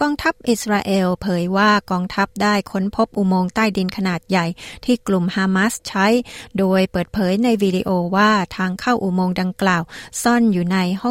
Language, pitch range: Thai, 185-215 Hz